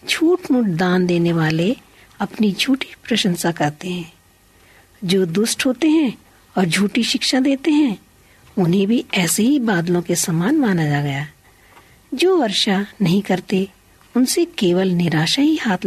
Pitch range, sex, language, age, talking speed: 175-235 Hz, female, Hindi, 50-69, 140 wpm